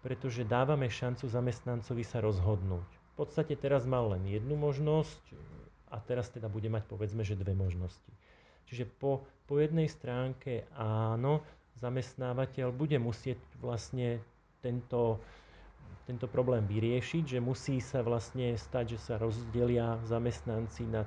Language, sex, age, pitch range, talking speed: Slovak, male, 30-49, 115-135 Hz, 130 wpm